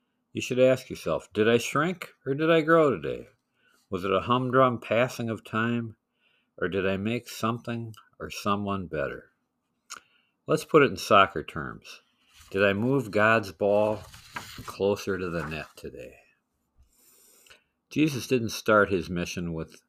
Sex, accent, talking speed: male, American, 150 wpm